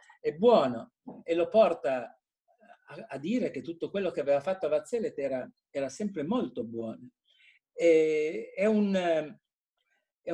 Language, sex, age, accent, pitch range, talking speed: Italian, male, 50-69, native, 140-225 Hz, 145 wpm